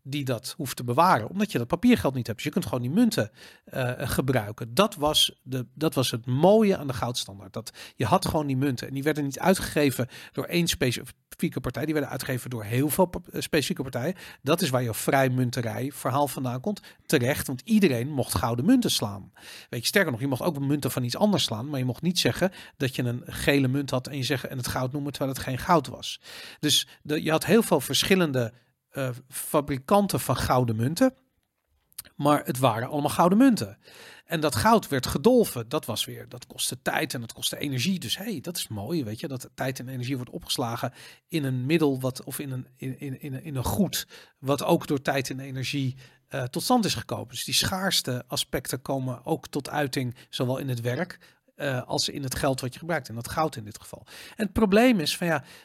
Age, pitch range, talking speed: 40-59, 125-160 Hz, 225 wpm